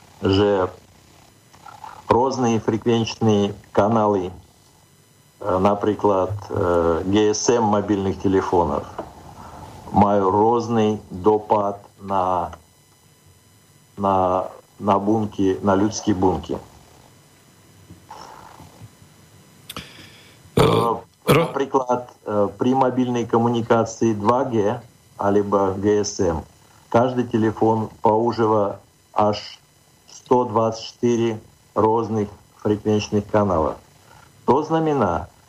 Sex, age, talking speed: male, 50-69, 65 wpm